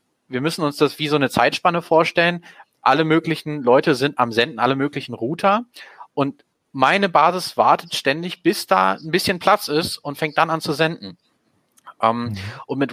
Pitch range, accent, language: 115-160 Hz, German, German